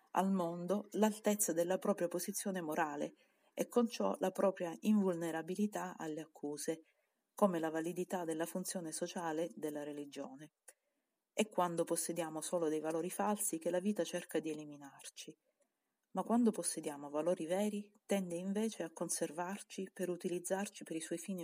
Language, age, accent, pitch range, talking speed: Italian, 40-59, native, 160-200 Hz, 145 wpm